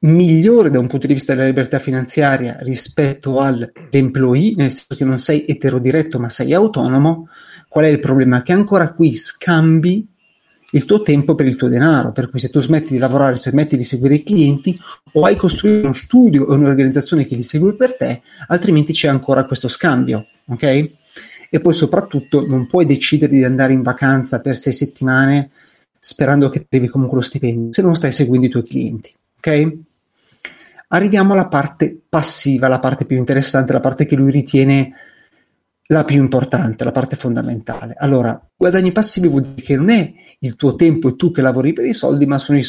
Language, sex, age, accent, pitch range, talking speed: Italian, male, 30-49, native, 130-160 Hz, 185 wpm